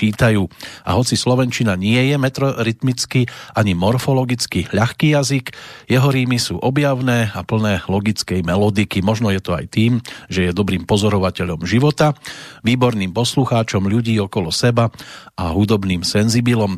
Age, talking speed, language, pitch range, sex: 40-59, 130 wpm, Slovak, 100-130 Hz, male